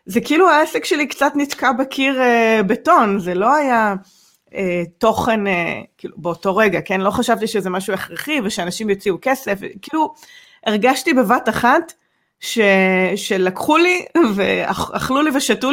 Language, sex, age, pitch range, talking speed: Hebrew, female, 30-49, 190-255 Hz, 140 wpm